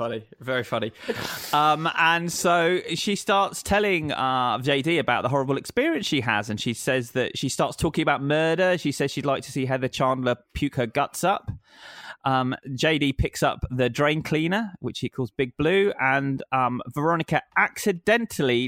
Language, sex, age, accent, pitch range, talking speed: English, male, 20-39, British, 125-165 Hz, 175 wpm